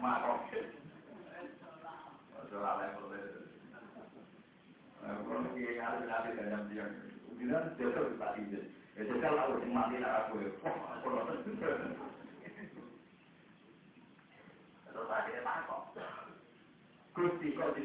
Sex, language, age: male, Indonesian, 60-79